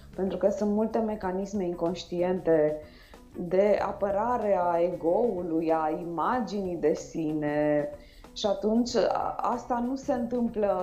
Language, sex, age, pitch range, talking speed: Romanian, female, 20-39, 175-230 Hz, 110 wpm